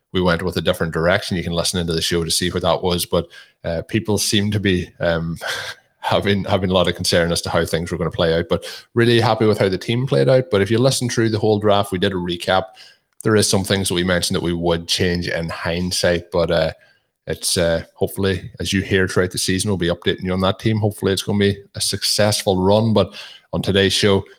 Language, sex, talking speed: English, male, 255 wpm